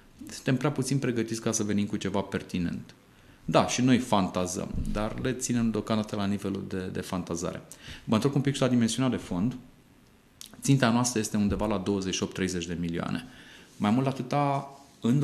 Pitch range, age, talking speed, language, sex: 100-125 Hz, 30-49, 175 wpm, Romanian, male